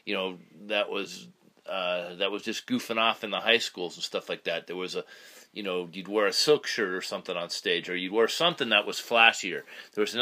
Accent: American